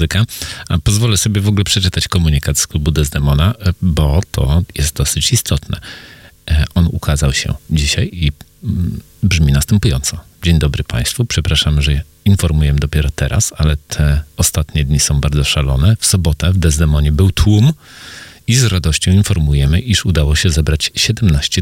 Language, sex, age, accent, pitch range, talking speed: Polish, male, 40-59, native, 75-95 Hz, 145 wpm